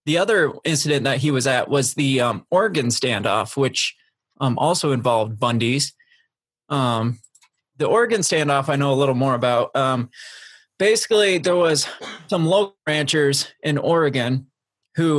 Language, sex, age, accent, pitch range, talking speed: English, male, 20-39, American, 125-150 Hz, 145 wpm